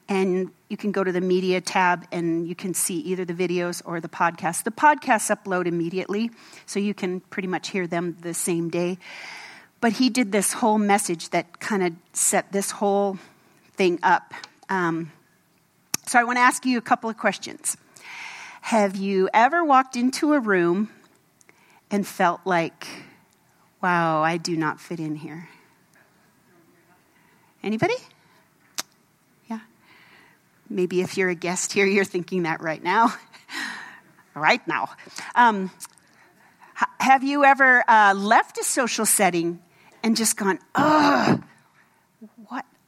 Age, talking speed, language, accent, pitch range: 40-59, 145 wpm, English, American, 180-250 Hz